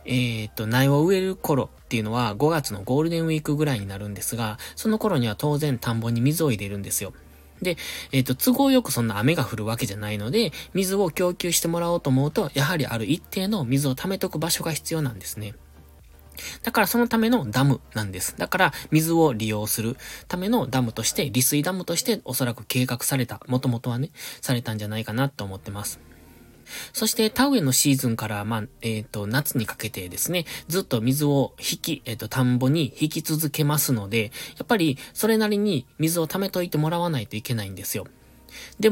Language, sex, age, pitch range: Japanese, male, 20-39, 110-165 Hz